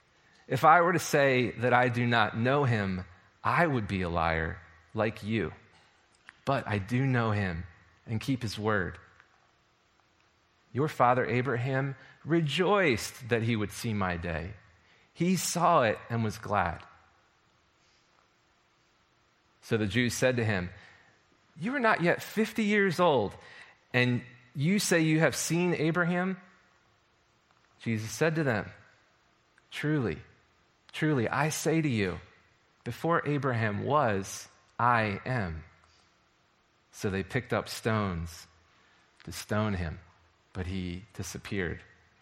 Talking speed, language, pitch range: 125 wpm, English, 95-135 Hz